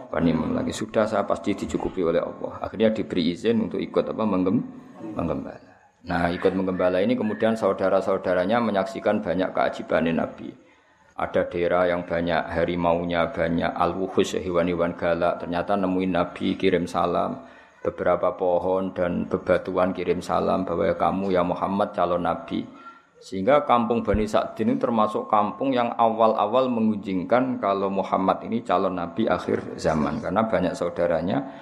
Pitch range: 85-100 Hz